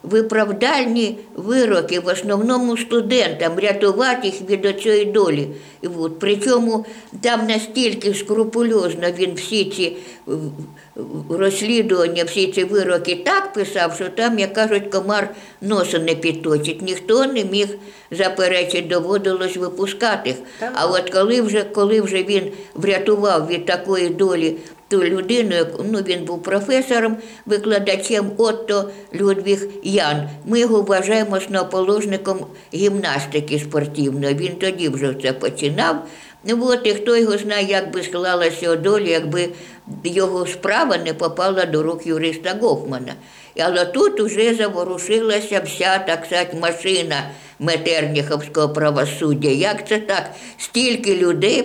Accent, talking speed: American, 120 wpm